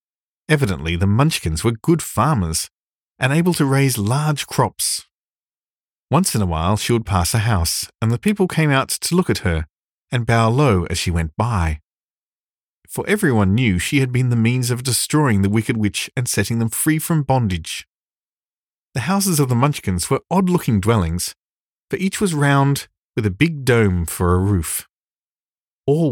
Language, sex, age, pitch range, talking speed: English, male, 40-59, 95-145 Hz, 175 wpm